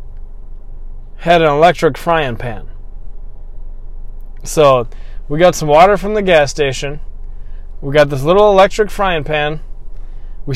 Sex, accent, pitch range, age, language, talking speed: male, American, 110-155 Hz, 20-39, English, 125 wpm